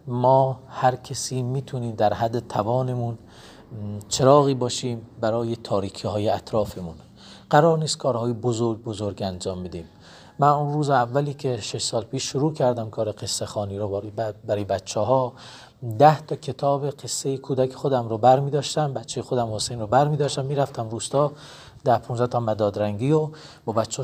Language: Persian